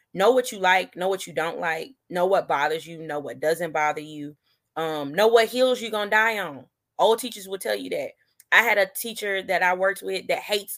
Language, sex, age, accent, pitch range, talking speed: English, female, 20-39, American, 160-215 Hz, 240 wpm